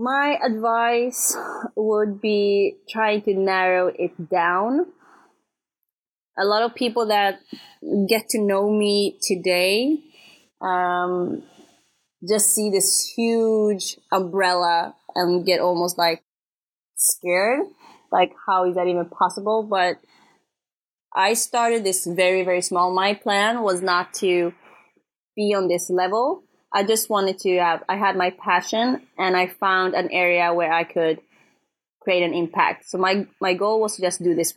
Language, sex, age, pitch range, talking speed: English, female, 20-39, 180-215 Hz, 140 wpm